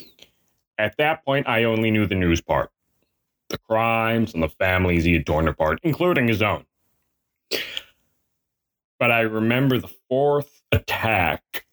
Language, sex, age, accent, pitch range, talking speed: English, male, 20-39, American, 90-115 Hz, 135 wpm